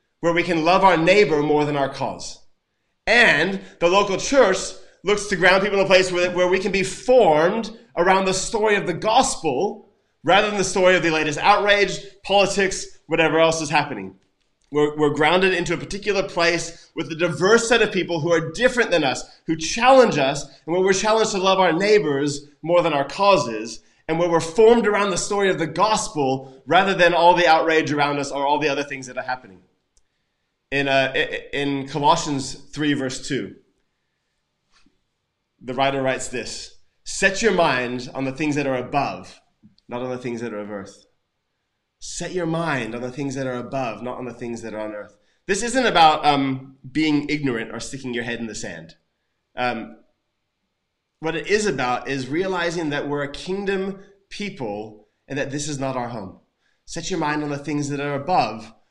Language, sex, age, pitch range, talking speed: English, male, 20-39, 135-190 Hz, 195 wpm